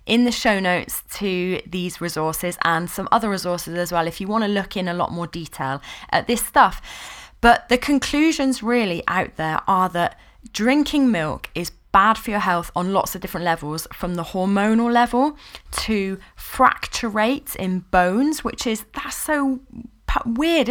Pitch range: 175-235 Hz